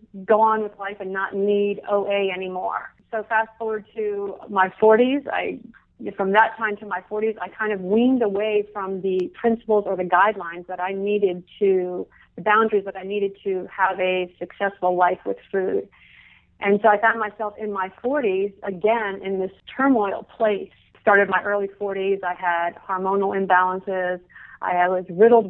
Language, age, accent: English, 40-59, American